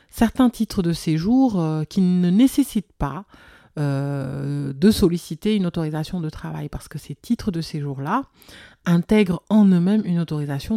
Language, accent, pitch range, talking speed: French, French, 155-205 Hz, 150 wpm